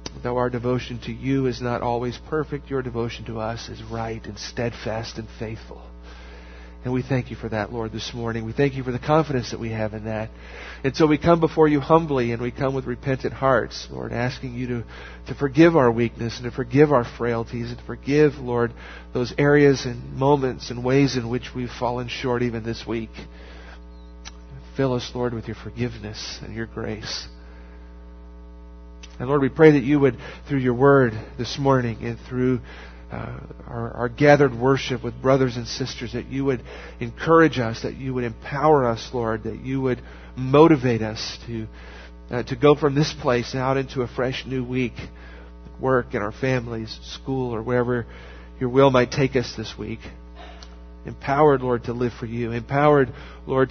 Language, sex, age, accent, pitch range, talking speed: English, male, 50-69, American, 110-130 Hz, 185 wpm